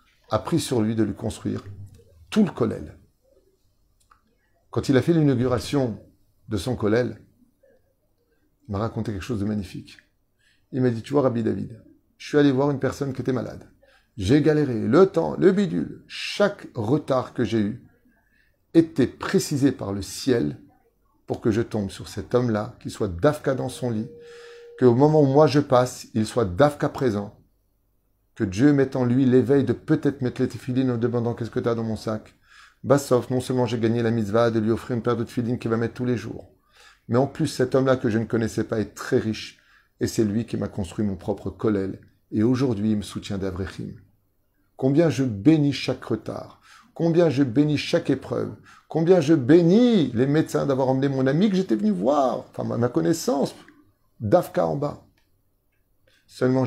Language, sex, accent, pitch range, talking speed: French, male, French, 105-140 Hz, 190 wpm